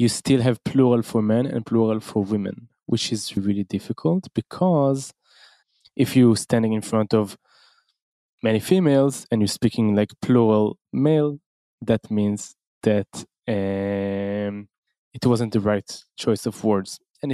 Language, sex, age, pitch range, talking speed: English, male, 20-39, 105-125 Hz, 140 wpm